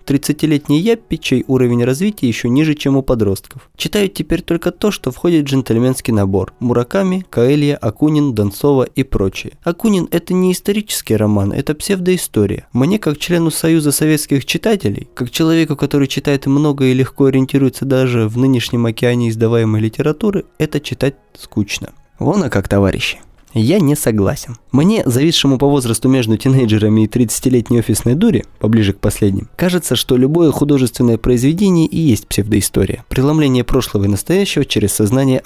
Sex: male